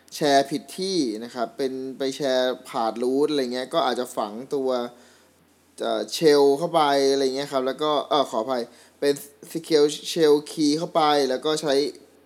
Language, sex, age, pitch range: Thai, male, 20-39, 130-165 Hz